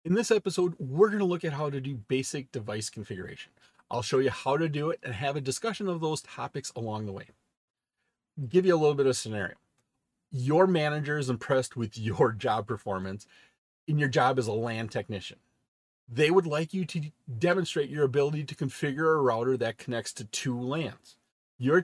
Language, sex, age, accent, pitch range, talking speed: English, male, 30-49, American, 120-155 Hz, 190 wpm